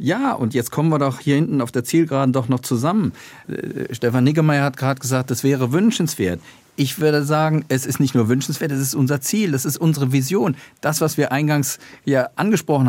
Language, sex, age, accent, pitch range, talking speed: German, male, 40-59, German, 115-145 Hz, 210 wpm